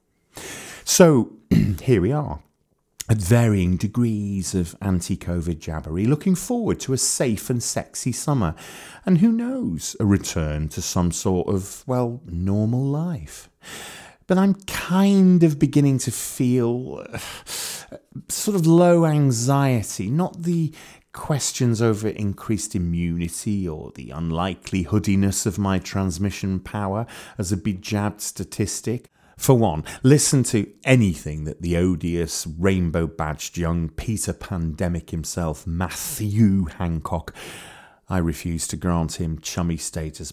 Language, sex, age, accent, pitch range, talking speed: English, male, 30-49, British, 85-130 Hz, 120 wpm